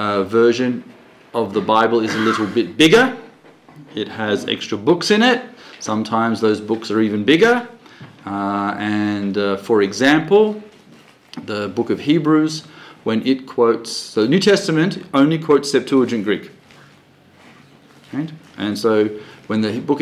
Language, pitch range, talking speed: English, 105-140 Hz, 140 wpm